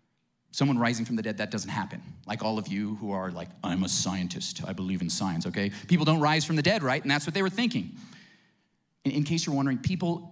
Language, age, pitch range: English, 30-49, 120-180 Hz